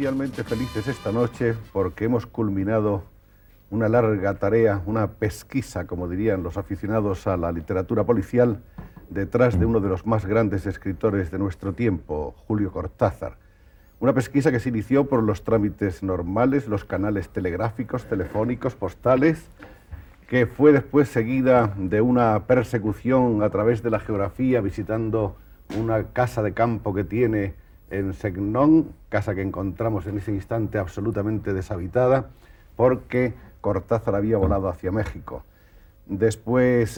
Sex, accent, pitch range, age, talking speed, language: male, Spanish, 100-120 Hz, 50-69, 135 wpm, Spanish